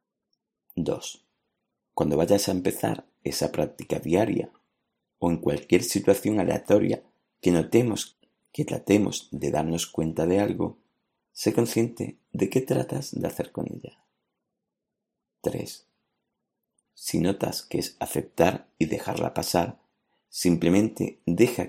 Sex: male